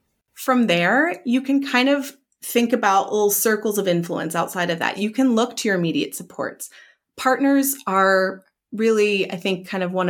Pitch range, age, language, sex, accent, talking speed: 180-250 Hz, 30-49, English, female, American, 180 wpm